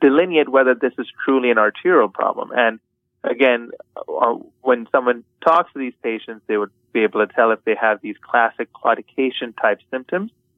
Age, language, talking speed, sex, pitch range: 30-49, English, 165 wpm, male, 115-145 Hz